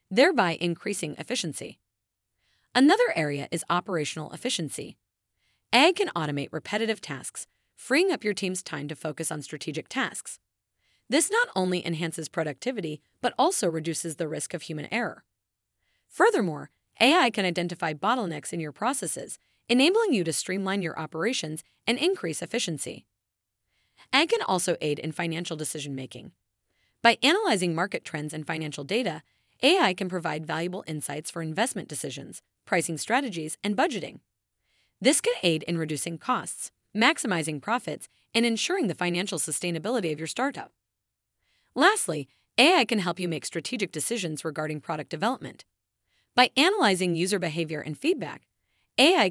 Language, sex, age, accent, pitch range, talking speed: English, female, 30-49, American, 155-235 Hz, 140 wpm